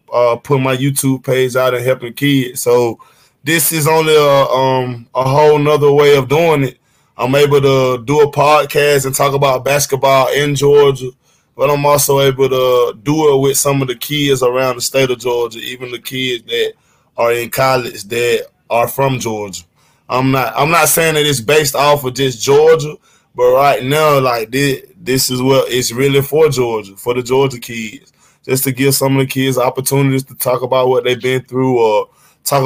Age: 20-39